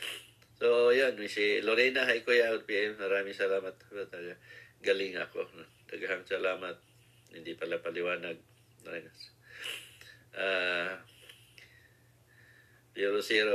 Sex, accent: male, native